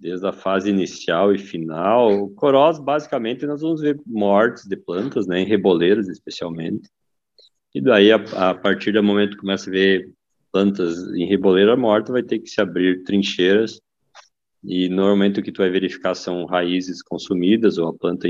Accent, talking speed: Brazilian, 175 wpm